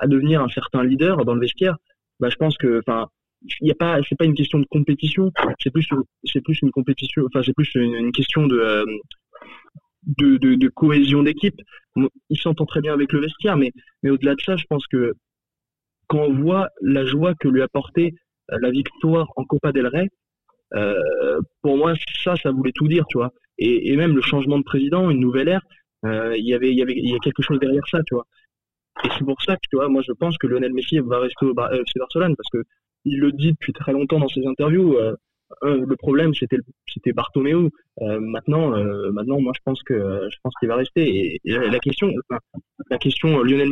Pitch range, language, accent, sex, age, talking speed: 130-155 Hz, French, French, male, 20-39, 220 wpm